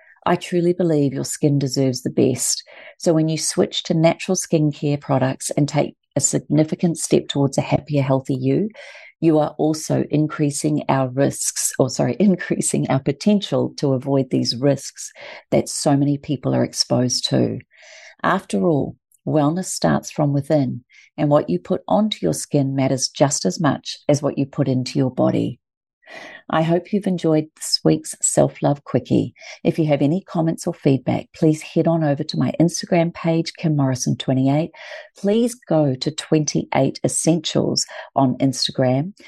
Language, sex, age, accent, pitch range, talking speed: English, female, 40-59, Australian, 135-175 Hz, 160 wpm